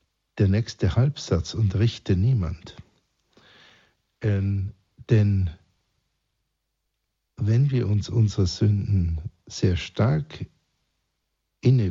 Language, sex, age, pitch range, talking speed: German, male, 60-79, 85-110 Hz, 80 wpm